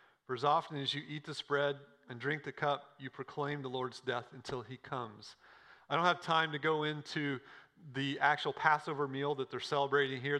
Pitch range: 140-180 Hz